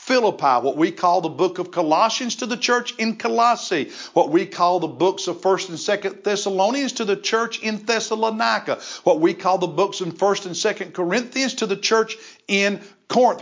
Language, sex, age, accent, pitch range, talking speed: English, male, 50-69, American, 175-230 Hz, 190 wpm